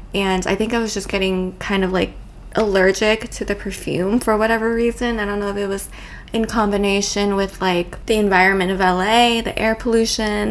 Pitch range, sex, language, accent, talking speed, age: 190-220 Hz, female, English, American, 195 wpm, 20-39